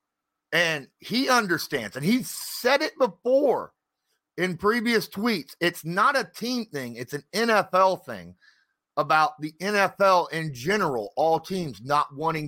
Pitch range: 140-190 Hz